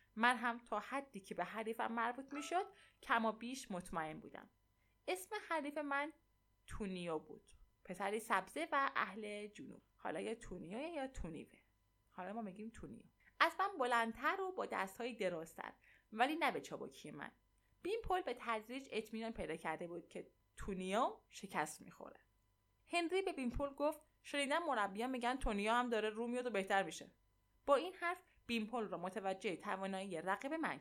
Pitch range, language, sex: 185-260 Hz, Persian, female